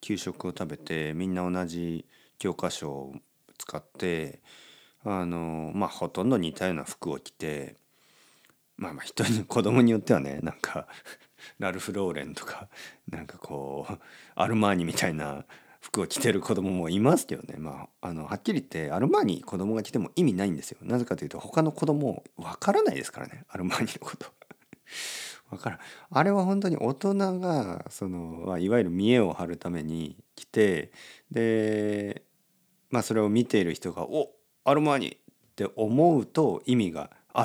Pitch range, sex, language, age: 90-145 Hz, male, Japanese, 40-59